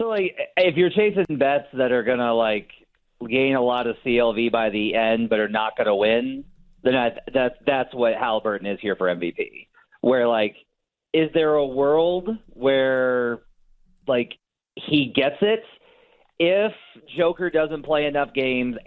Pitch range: 125-175 Hz